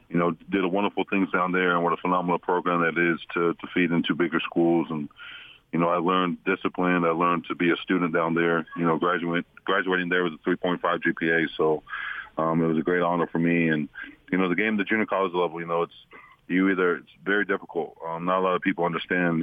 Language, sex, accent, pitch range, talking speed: English, male, American, 80-90 Hz, 240 wpm